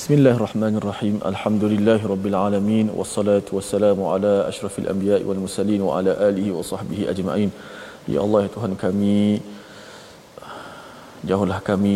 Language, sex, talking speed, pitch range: Malayalam, male, 125 wpm, 95-105 Hz